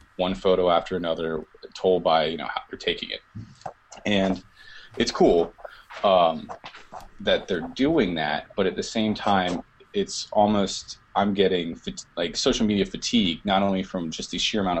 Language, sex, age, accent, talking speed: English, male, 20-39, American, 165 wpm